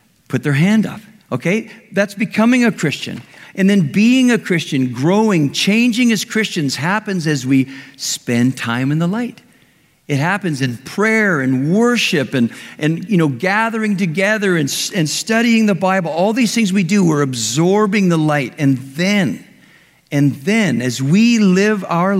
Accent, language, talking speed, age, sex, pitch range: American, English, 160 wpm, 50-69, male, 150-200 Hz